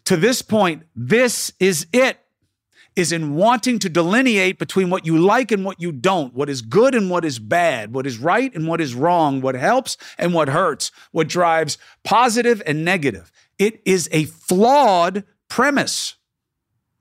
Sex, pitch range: male, 130-210 Hz